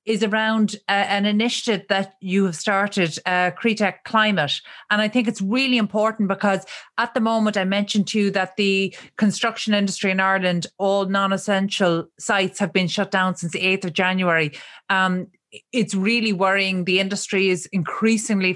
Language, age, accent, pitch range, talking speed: English, 30-49, Irish, 185-210 Hz, 170 wpm